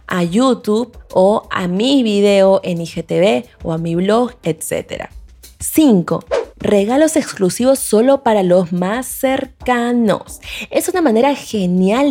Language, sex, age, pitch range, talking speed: Spanish, female, 20-39, 180-255 Hz, 125 wpm